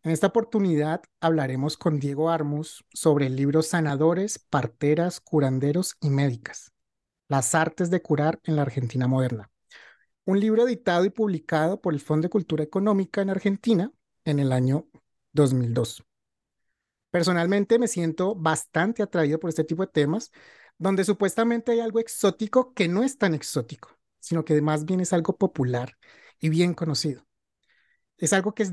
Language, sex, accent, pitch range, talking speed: Spanish, male, Colombian, 150-200 Hz, 155 wpm